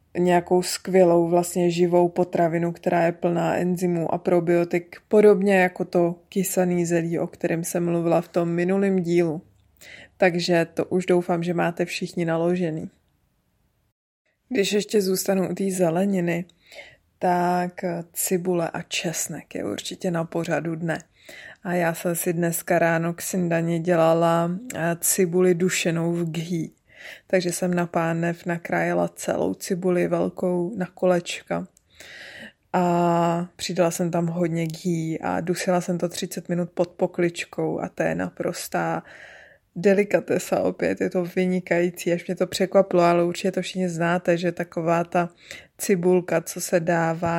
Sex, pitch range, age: female, 170-185 Hz, 20-39